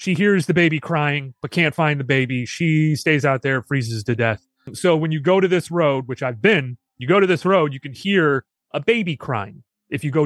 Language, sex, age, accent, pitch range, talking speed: English, male, 30-49, American, 135-170 Hz, 240 wpm